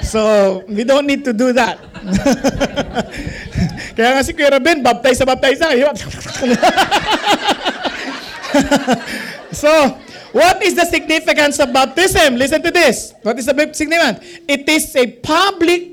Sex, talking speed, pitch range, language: male, 110 wpm, 235-300 Hz, English